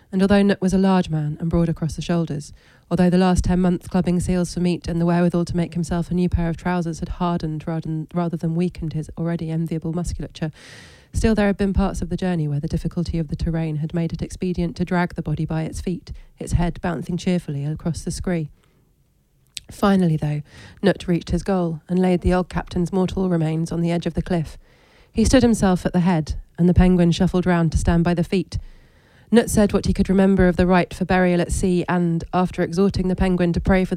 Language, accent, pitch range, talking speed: English, British, 170-185 Hz, 230 wpm